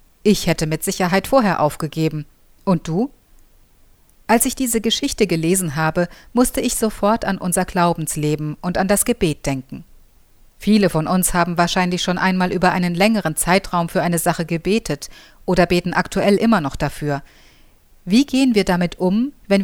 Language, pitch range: German, 155-205 Hz